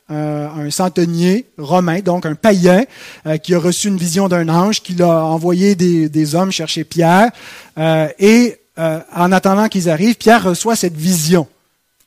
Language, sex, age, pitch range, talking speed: French, male, 30-49, 165-220 Hz, 170 wpm